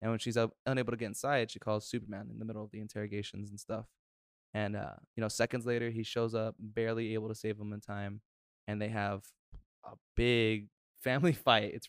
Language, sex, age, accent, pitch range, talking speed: English, male, 20-39, American, 110-140 Hz, 215 wpm